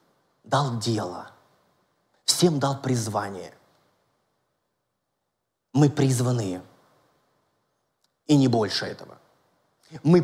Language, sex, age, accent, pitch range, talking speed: Russian, male, 30-49, native, 140-185 Hz, 70 wpm